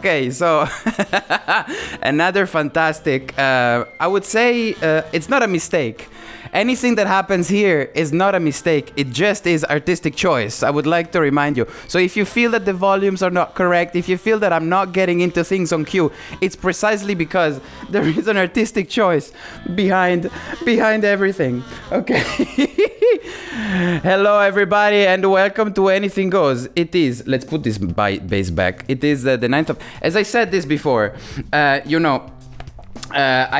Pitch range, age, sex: 140-190 Hz, 20-39, male